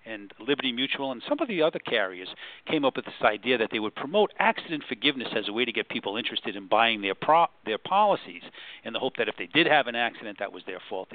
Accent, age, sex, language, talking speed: American, 50-69, male, English, 250 wpm